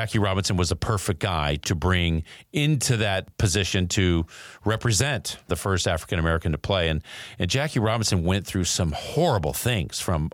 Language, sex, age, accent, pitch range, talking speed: English, male, 40-59, American, 90-115 Hz, 170 wpm